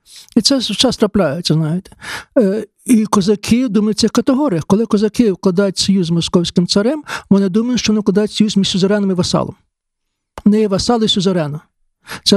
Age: 60-79